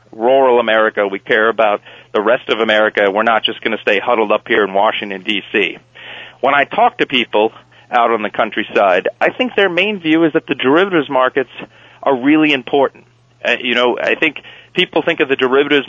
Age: 40-59